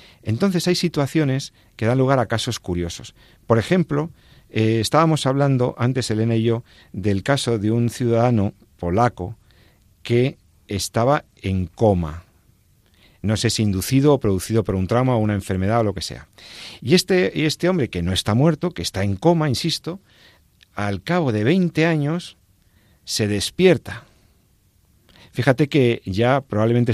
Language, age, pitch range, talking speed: Spanish, 50-69, 95-125 Hz, 150 wpm